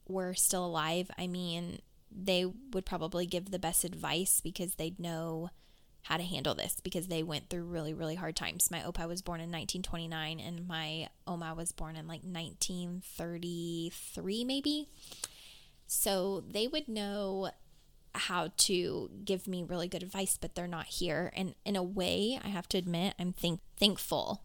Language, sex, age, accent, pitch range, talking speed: English, female, 10-29, American, 170-190 Hz, 165 wpm